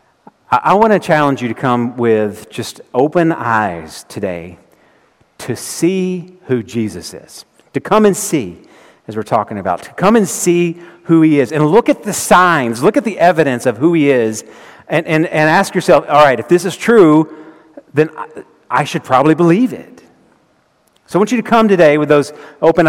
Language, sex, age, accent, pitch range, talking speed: English, male, 40-59, American, 135-170 Hz, 190 wpm